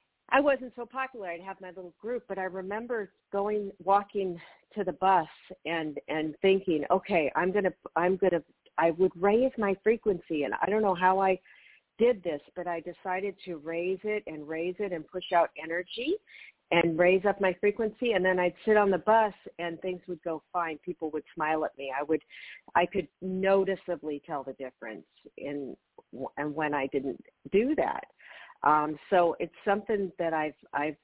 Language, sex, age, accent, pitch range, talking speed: English, female, 50-69, American, 160-200 Hz, 190 wpm